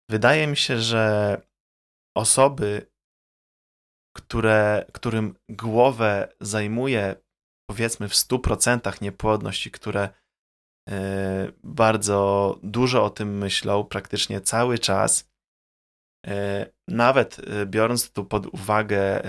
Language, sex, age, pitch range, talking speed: Polish, male, 20-39, 100-115 Hz, 80 wpm